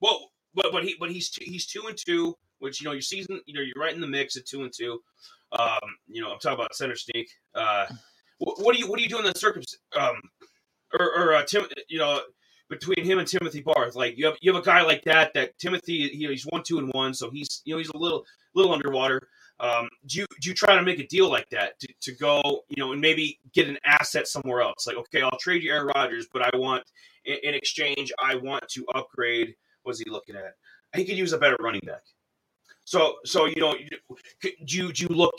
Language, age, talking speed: English, 30-49, 250 wpm